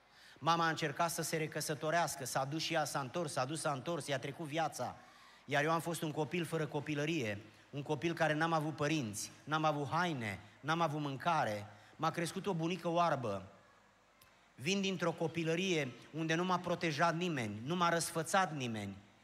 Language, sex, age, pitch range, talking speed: Romanian, male, 30-49, 145-175 Hz, 175 wpm